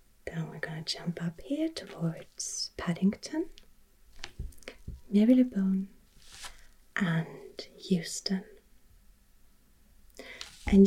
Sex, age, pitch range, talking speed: female, 30-49, 175-210 Hz, 70 wpm